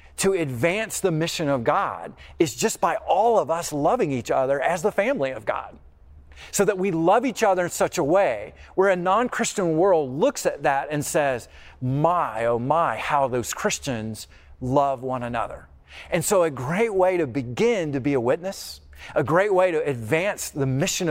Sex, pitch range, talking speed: male, 115-165 Hz, 190 wpm